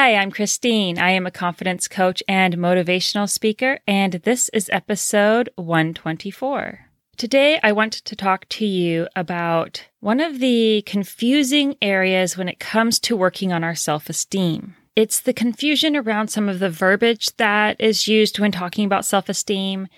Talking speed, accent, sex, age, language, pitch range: 155 wpm, American, female, 30-49, English, 185-225 Hz